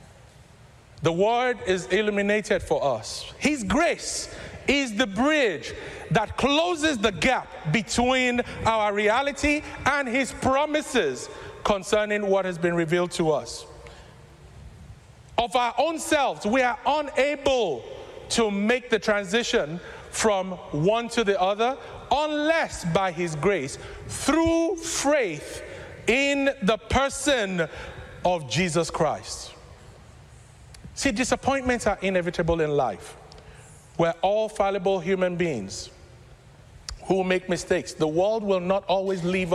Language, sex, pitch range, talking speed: English, male, 185-260 Hz, 115 wpm